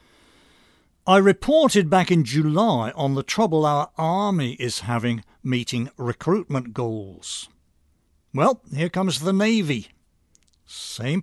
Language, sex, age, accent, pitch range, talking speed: English, male, 60-79, British, 110-165 Hz, 110 wpm